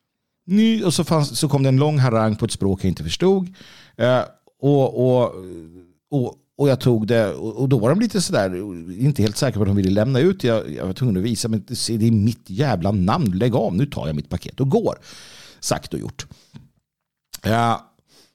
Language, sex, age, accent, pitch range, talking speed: Swedish, male, 50-69, native, 115-165 Hz, 220 wpm